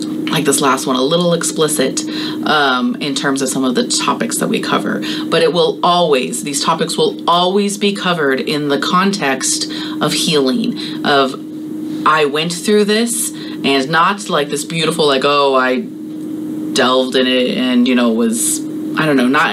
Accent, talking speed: American, 175 wpm